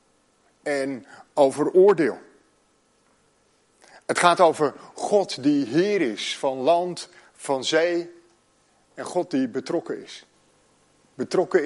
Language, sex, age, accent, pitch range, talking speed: Dutch, male, 50-69, Dutch, 140-225 Hz, 105 wpm